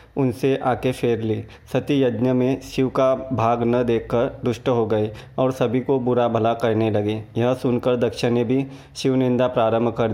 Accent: native